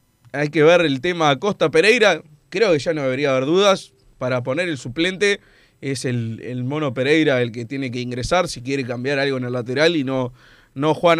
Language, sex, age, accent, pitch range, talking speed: Spanish, male, 20-39, Argentinian, 130-170 Hz, 210 wpm